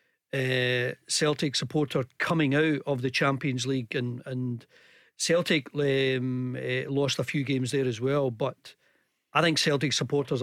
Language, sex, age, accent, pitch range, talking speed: English, male, 40-59, British, 130-155 Hz, 150 wpm